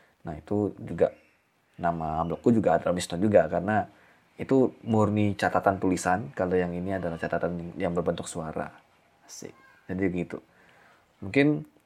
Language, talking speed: Indonesian, 130 wpm